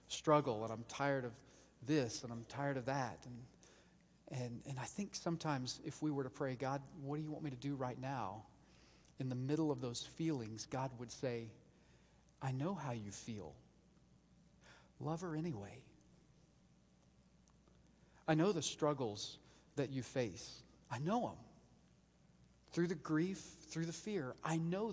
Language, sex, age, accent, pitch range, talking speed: English, male, 40-59, American, 105-155 Hz, 160 wpm